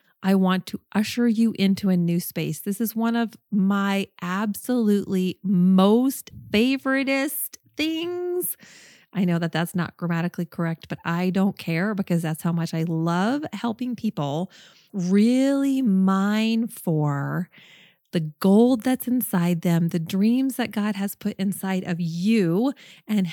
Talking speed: 140 wpm